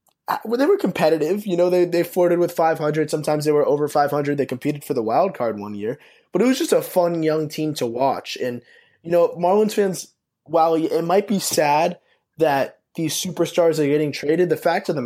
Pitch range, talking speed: 135-170 Hz, 215 wpm